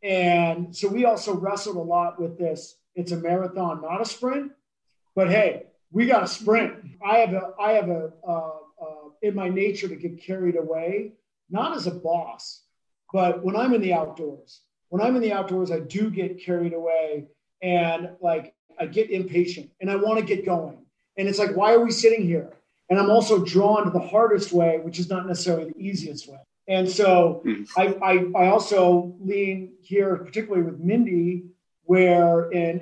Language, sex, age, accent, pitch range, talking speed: English, male, 40-59, American, 170-200 Hz, 190 wpm